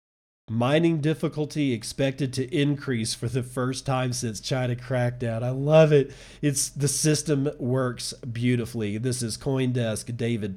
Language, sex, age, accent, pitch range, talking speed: English, male, 40-59, American, 110-130 Hz, 140 wpm